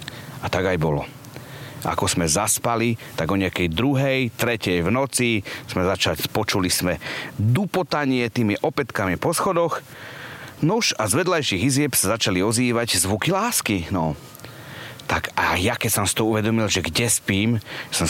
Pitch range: 95-130 Hz